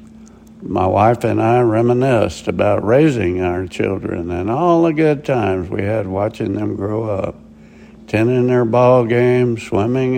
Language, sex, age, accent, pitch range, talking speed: English, male, 60-79, American, 105-125 Hz, 145 wpm